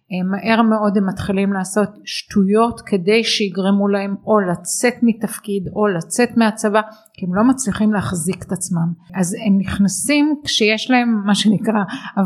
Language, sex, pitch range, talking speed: Hebrew, female, 190-225 Hz, 145 wpm